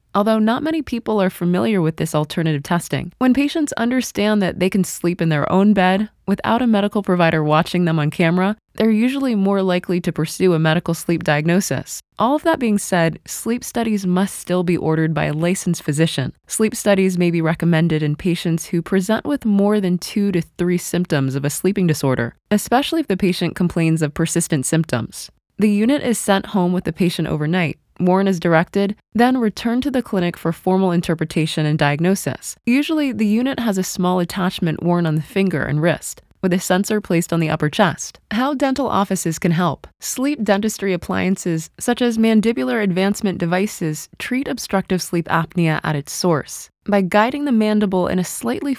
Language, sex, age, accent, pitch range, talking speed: English, female, 20-39, American, 165-215 Hz, 185 wpm